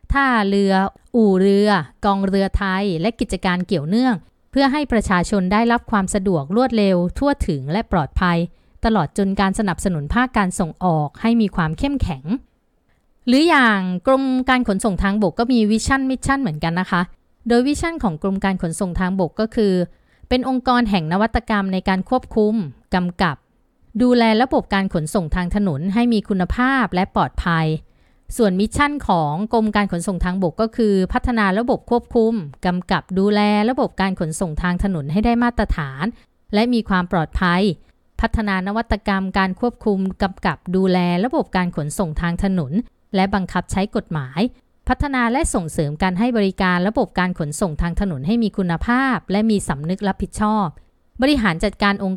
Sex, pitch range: female, 180-230 Hz